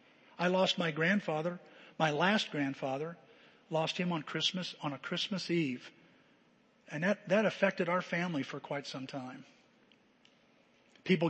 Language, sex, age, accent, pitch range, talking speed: English, male, 50-69, American, 155-205 Hz, 140 wpm